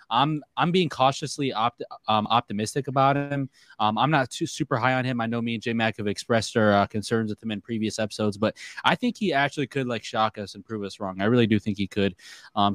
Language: English